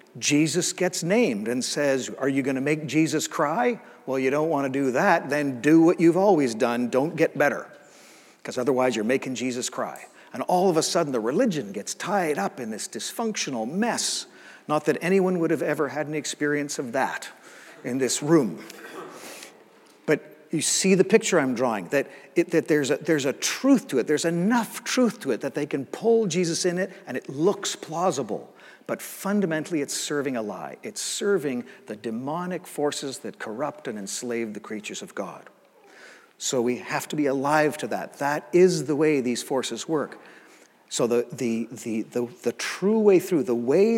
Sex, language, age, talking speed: male, English, 50-69, 190 wpm